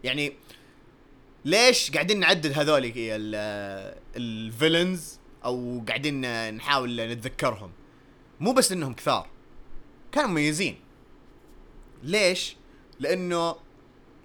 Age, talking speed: 30-49, 75 wpm